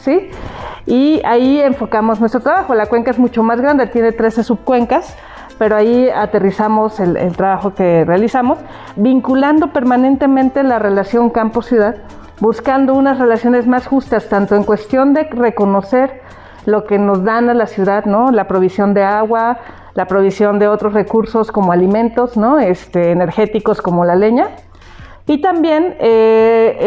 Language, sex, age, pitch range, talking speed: Spanish, female, 40-59, 205-250 Hz, 145 wpm